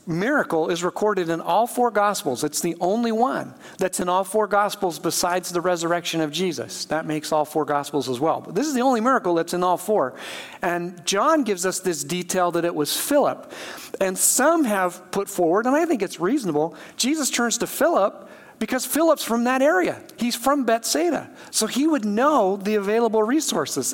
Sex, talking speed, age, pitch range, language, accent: male, 195 wpm, 50-69, 180-245 Hz, English, American